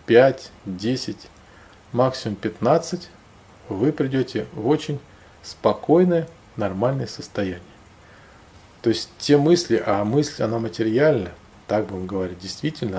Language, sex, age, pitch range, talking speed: Russian, male, 40-59, 95-125 Hz, 105 wpm